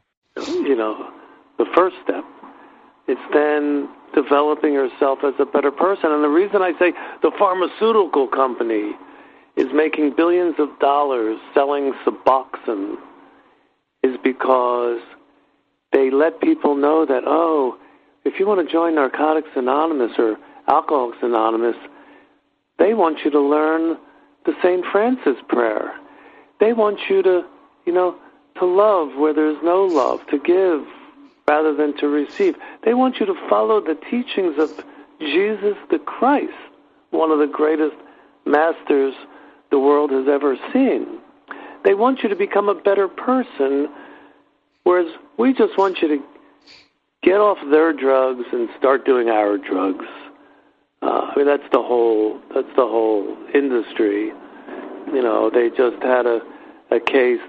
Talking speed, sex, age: 140 wpm, male, 50-69